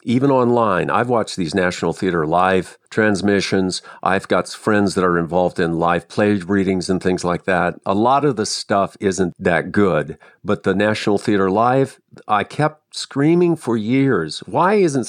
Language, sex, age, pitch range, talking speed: English, male, 50-69, 105-145 Hz, 170 wpm